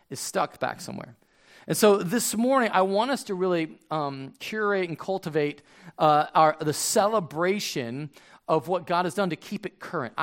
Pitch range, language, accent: 150-210 Hz, English, American